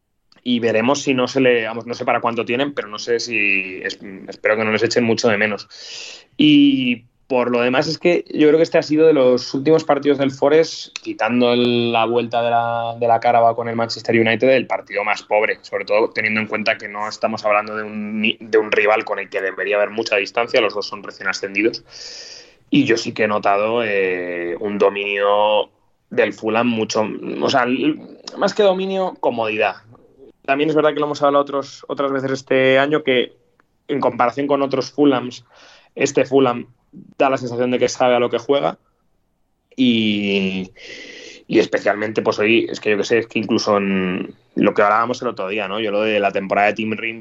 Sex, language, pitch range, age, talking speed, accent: male, Spanish, 110-145 Hz, 20-39, 210 wpm, Spanish